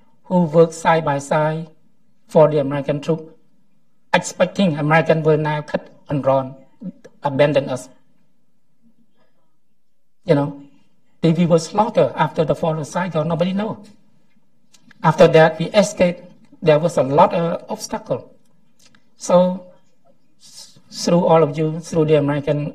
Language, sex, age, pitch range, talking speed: English, male, 60-79, 150-185 Hz, 130 wpm